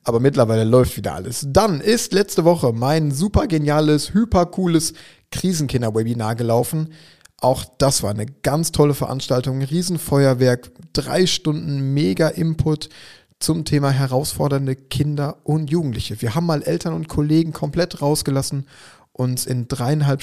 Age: 30-49